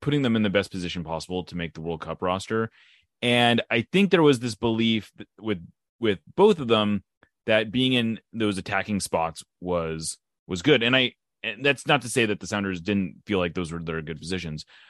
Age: 30-49